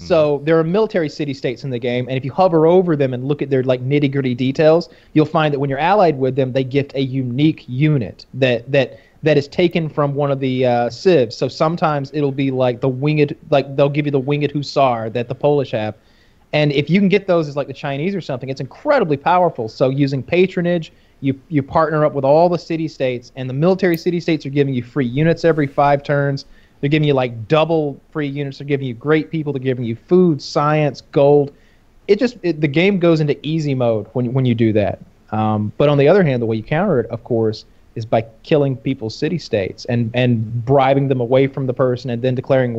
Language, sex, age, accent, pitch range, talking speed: English, male, 30-49, American, 125-155 Hz, 235 wpm